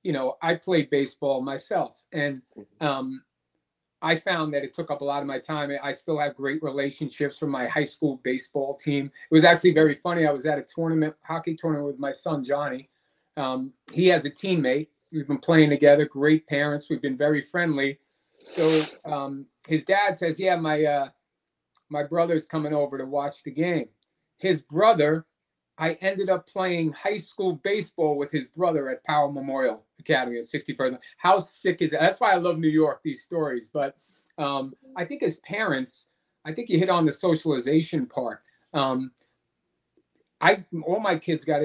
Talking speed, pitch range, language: 185 wpm, 140-165 Hz, English